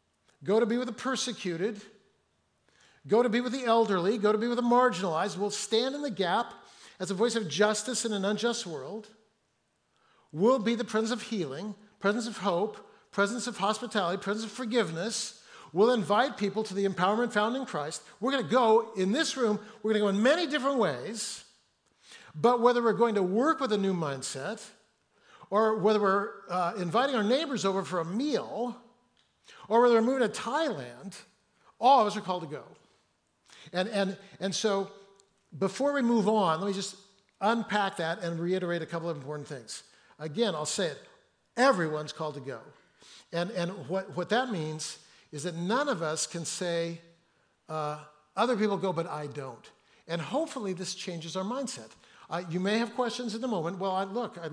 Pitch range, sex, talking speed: 175-230 Hz, male, 185 wpm